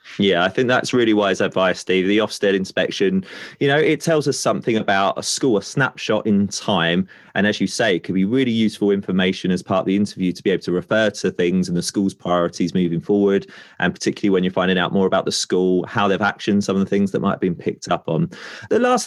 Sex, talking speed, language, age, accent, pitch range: male, 245 wpm, English, 30-49, British, 100-140 Hz